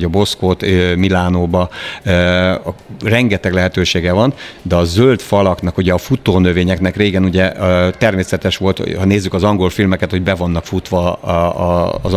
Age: 60-79